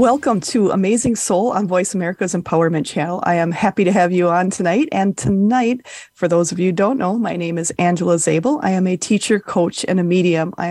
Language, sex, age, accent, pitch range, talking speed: English, female, 30-49, American, 175-220 Hz, 225 wpm